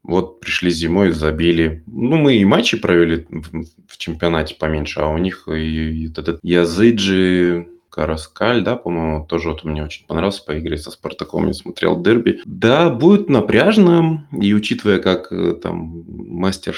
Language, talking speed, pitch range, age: Russian, 155 wpm, 75-100 Hz, 20-39